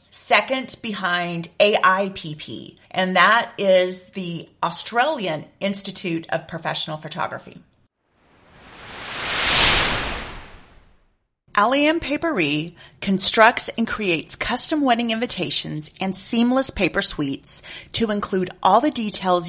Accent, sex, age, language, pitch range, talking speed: American, female, 30-49, English, 155-215 Hz, 90 wpm